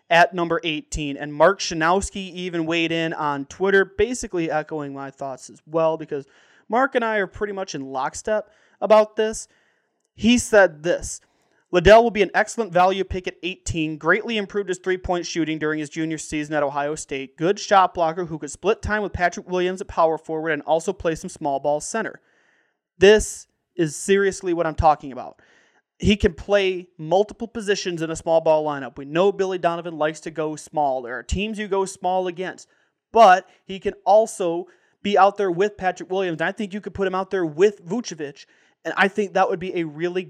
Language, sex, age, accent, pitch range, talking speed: English, male, 30-49, American, 160-205 Hz, 200 wpm